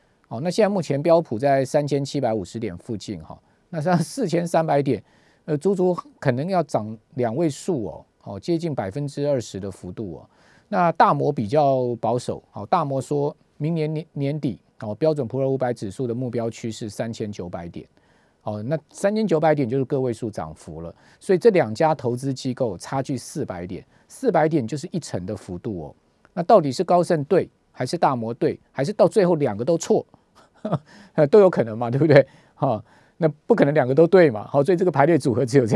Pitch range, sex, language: 120-165 Hz, male, Chinese